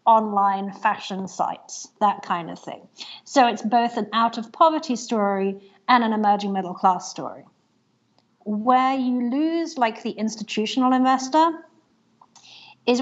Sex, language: female, English